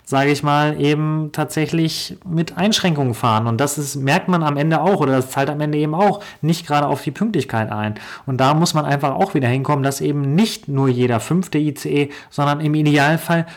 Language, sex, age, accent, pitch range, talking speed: German, male, 30-49, German, 125-155 Hz, 210 wpm